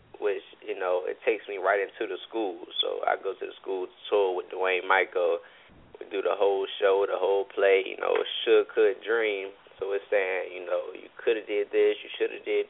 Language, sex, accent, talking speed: English, male, American, 220 wpm